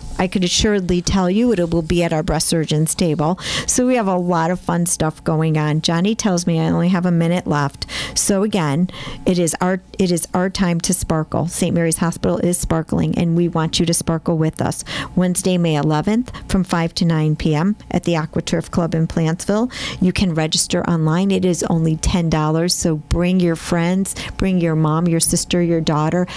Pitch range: 160-180 Hz